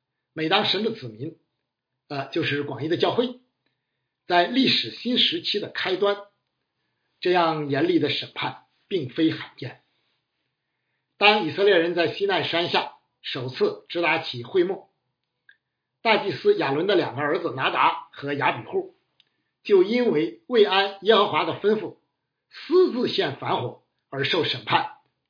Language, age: Chinese, 50-69